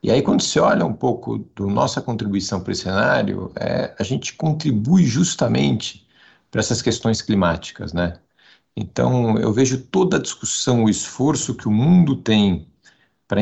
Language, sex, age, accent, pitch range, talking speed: Portuguese, male, 50-69, Brazilian, 95-125 Hz, 160 wpm